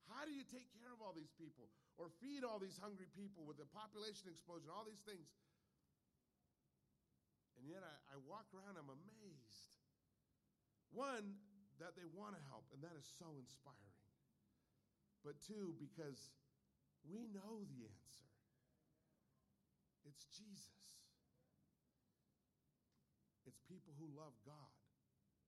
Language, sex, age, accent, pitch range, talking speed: English, male, 50-69, American, 125-200 Hz, 130 wpm